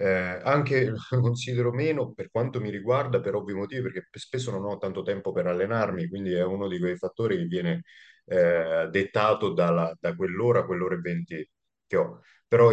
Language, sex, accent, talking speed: Italian, male, native, 185 wpm